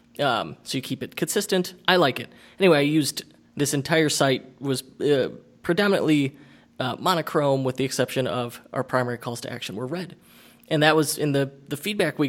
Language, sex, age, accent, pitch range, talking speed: English, male, 20-39, American, 130-165 Hz, 190 wpm